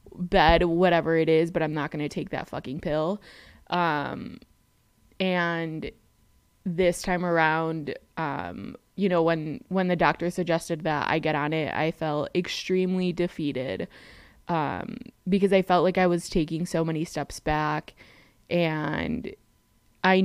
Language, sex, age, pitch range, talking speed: English, female, 20-39, 155-175 Hz, 145 wpm